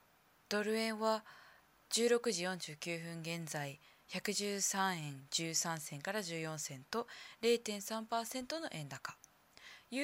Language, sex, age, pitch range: Japanese, female, 20-39, 170-235 Hz